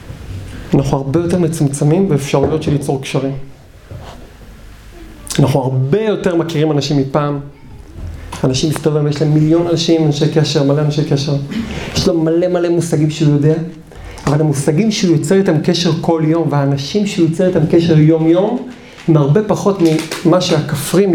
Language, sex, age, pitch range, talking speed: Hebrew, male, 40-59, 145-185 Hz, 105 wpm